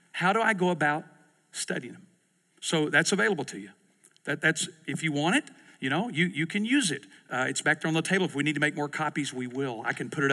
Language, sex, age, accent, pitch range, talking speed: English, male, 50-69, American, 145-195 Hz, 260 wpm